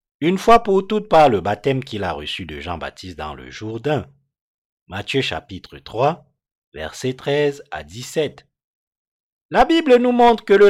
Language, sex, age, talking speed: French, male, 50-69, 155 wpm